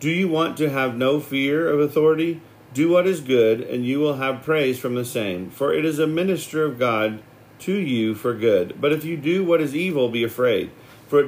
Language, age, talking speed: English, 40-59, 230 wpm